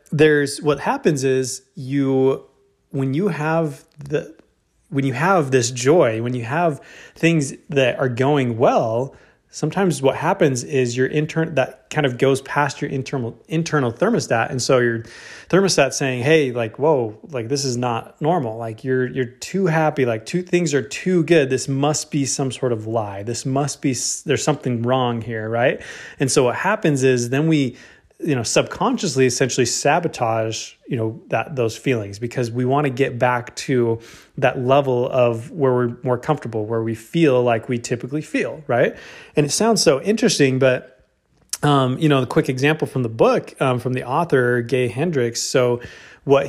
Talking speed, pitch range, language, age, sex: 180 wpm, 125-150 Hz, English, 20-39, male